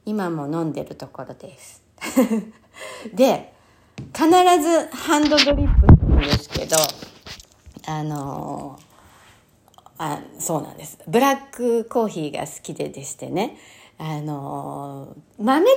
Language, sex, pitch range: Japanese, female, 175-250 Hz